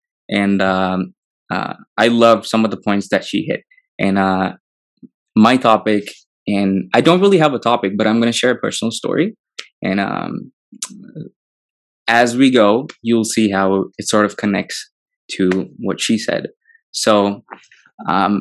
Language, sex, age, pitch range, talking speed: Telugu, male, 20-39, 100-120 Hz, 165 wpm